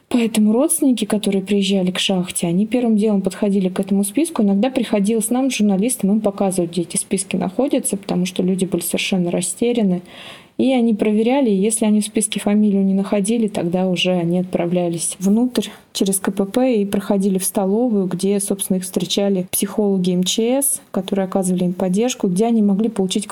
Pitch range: 190-220 Hz